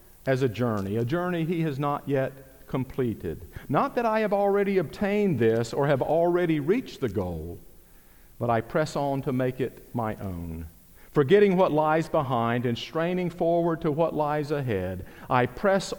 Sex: male